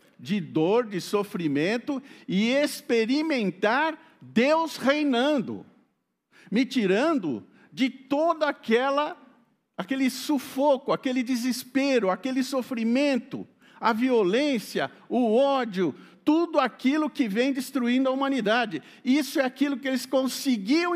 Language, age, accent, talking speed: Portuguese, 50-69, Brazilian, 100 wpm